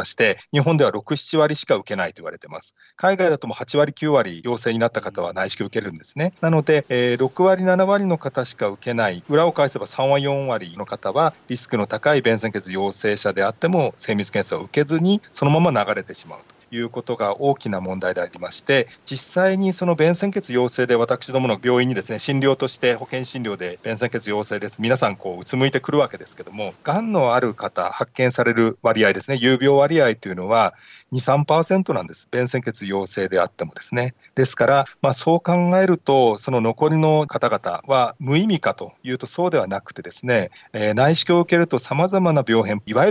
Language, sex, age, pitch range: Japanese, male, 40-59, 115-155 Hz